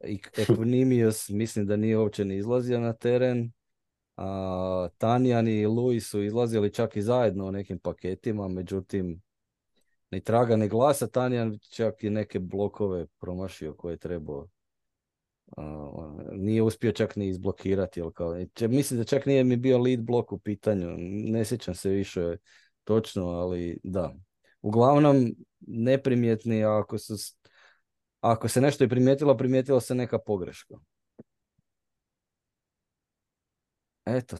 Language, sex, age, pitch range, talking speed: Croatian, male, 20-39, 95-120 Hz, 125 wpm